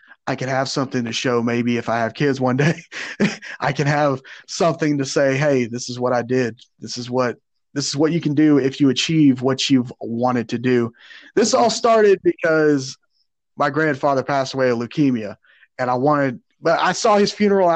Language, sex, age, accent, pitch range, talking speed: English, male, 30-49, American, 130-175 Hz, 205 wpm